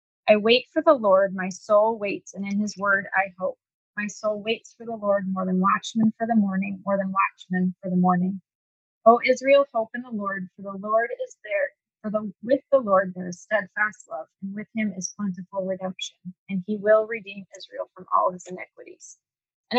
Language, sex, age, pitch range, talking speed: English, female, 20-39, 190-235 Hz, 210 wpm